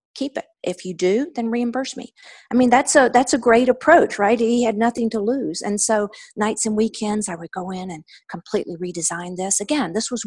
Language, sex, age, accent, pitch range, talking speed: English, female, 50-69, American, 180-235 Hz, 220 wpm